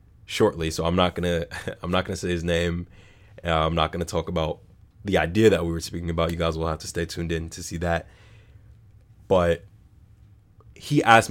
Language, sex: English, male